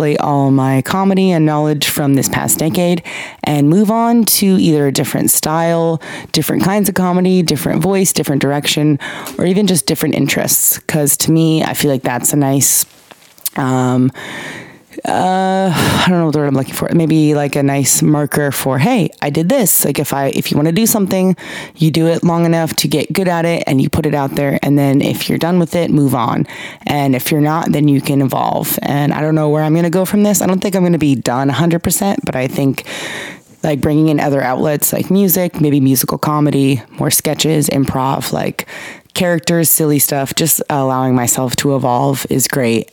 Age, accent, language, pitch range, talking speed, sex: 20-39, American, English, 135-165 Hz, 205 wpm, female